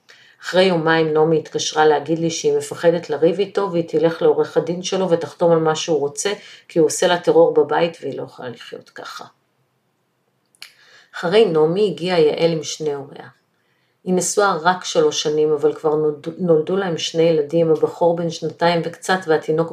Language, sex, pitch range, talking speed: Hebrew, female, 160-250 Hz, 165 wpm